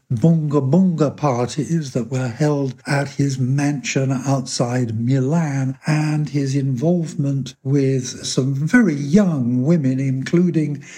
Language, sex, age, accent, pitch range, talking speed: English, male, 60-79, British, 125-155 Hz, 110 wpm